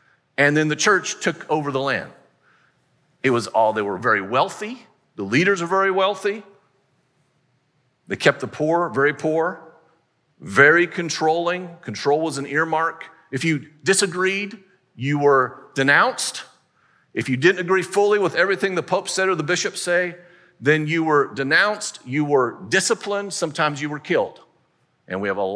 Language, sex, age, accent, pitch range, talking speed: English, male, 50-69, American, 135-170 Hz, 155 wpm